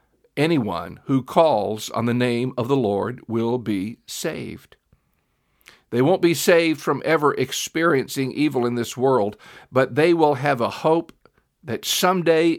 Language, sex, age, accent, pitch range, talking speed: English, male, 50-69, American, 115-155 Hz, 150 wpm